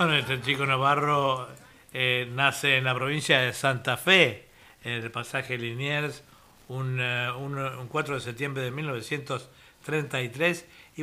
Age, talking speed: 60-79, 135 wpm